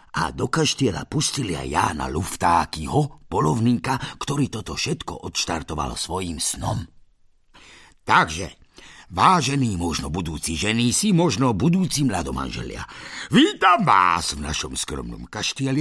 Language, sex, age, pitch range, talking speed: Slovak, male, 50-69, 80-130 Hz, 115 wpm